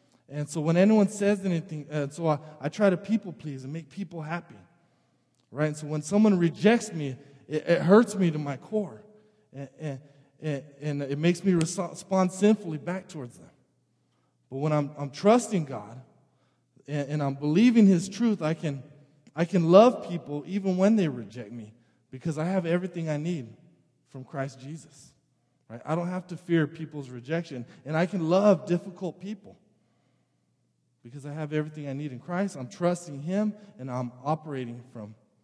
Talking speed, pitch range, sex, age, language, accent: 175 wpm, 130-175 Hz, male, 20-39, English, American